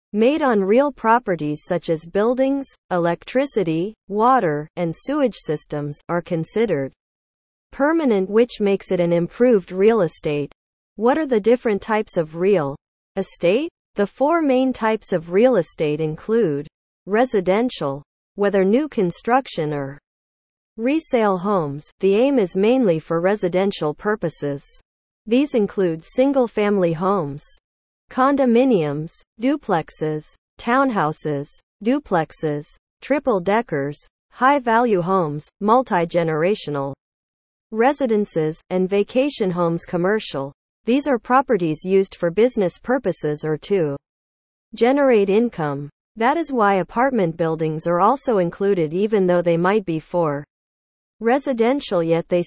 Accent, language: American, English